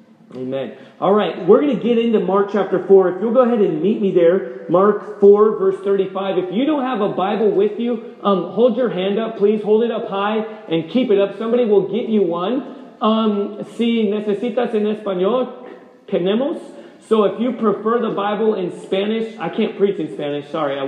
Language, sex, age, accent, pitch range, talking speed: English, male, 30-49, American, 180-215 Hz, 200 wpm